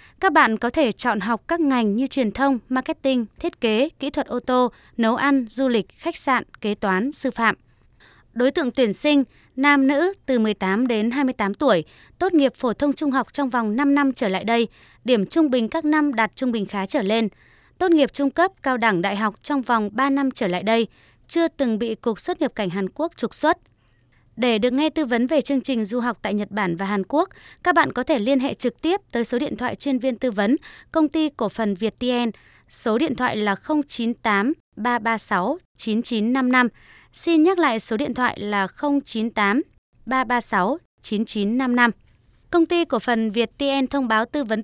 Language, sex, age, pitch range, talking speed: Vietnamese, female, 20-39, 220-280 Hz, 200 wpm